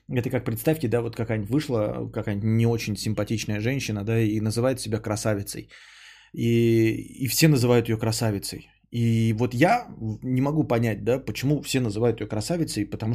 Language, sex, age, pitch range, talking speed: Bulgarian, male, 20-39, 105-135 Hz, 165 wpm